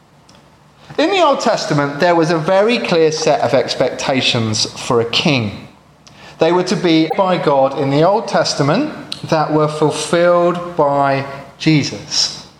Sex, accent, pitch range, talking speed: male, British, 160-225 Hz, 145 wpm